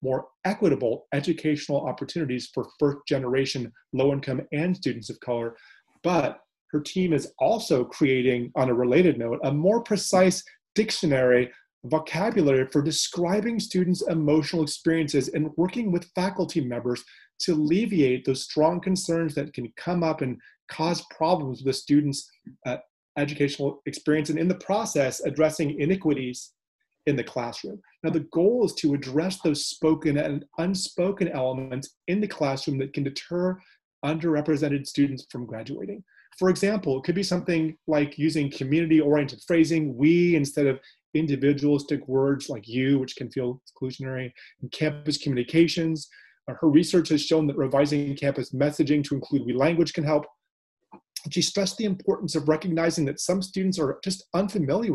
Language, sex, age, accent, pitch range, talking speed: English, male, 30-49, American, 140-170 Hz, 145 wpm